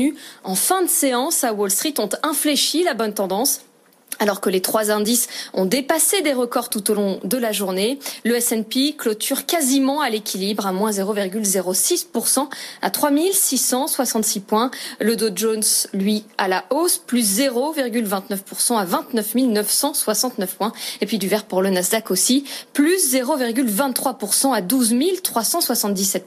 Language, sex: French, female